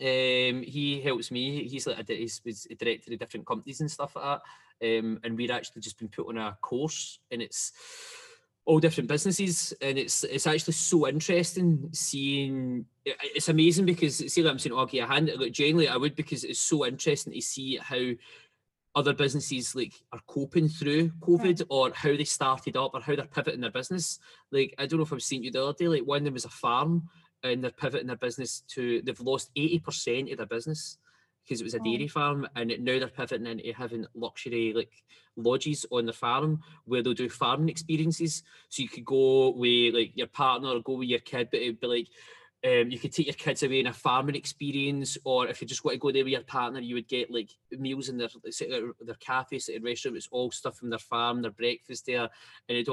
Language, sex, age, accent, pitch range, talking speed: English, male, 20-39, British, 120-155 Hz, 220 wpm